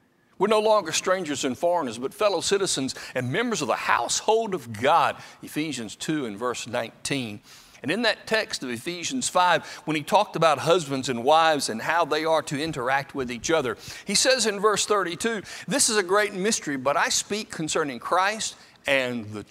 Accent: American